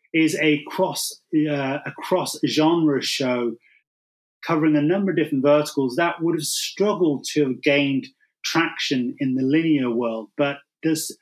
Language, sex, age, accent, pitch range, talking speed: English, male, 30-49, British, 135-165 Hz, 140 wpm